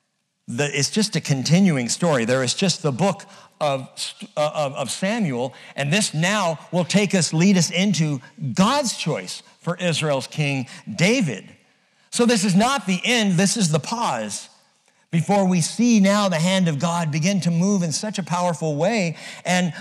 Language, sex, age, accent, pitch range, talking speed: English, male, 50-69, American, 150-200 Hz, 175 wpm